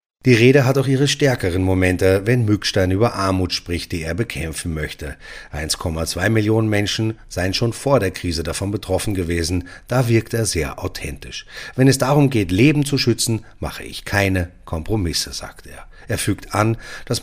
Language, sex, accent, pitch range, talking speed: German, male, German, 90-120 Hz, 170 wpm